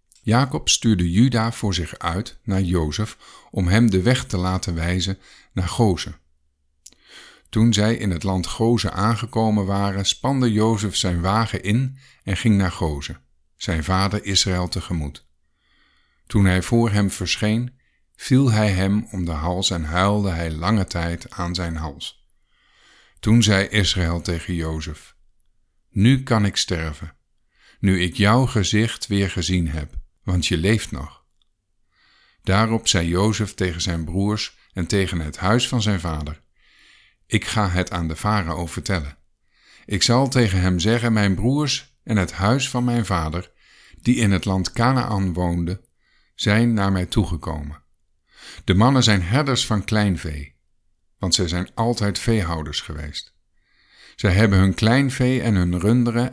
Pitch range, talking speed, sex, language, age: 85-110 Hz, 150 wpm, male, Dutch, 50-69